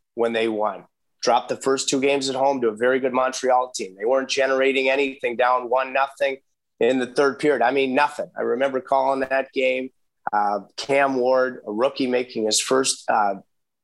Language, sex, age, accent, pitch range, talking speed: English, male, 30-49, American, 120-140 Hz, 190 wpm